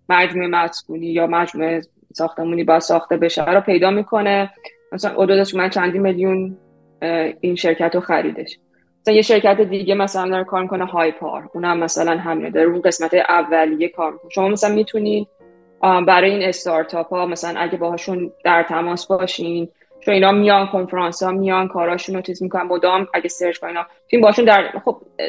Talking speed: 160 wpm